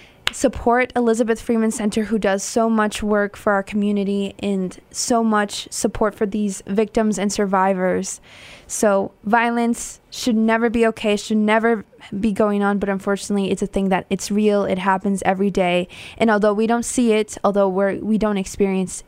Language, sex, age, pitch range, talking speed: English, female, 20-39, 195-225 Hz, 170 wpm